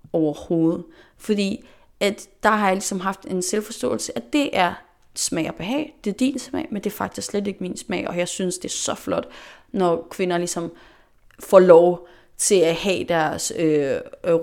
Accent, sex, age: native, female, 30-49